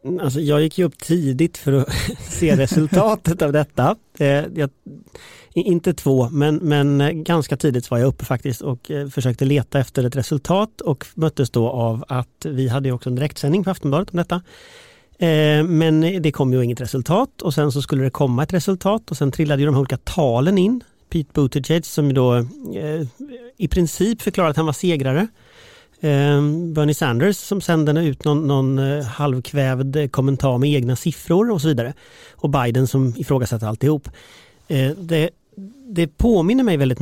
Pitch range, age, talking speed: 135-175 Hz, 30-49, 170 wpm